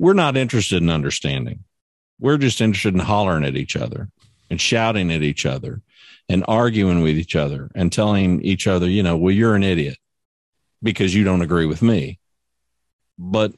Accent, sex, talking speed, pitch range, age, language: American, male, 175 wpm, 85-110 Hz, 50-69, English